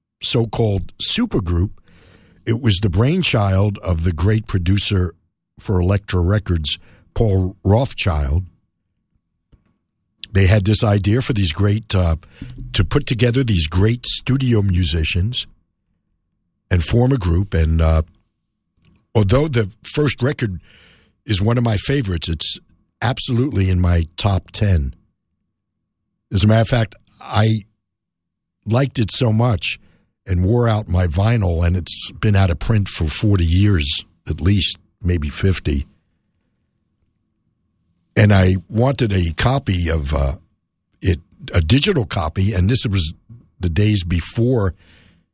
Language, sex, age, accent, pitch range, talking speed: English, male, 60-79, American, 85-110 Hz, 125 wpm